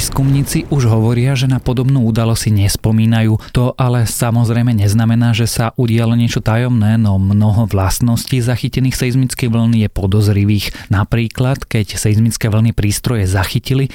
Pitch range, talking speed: 105-120 Hz, 135 wpm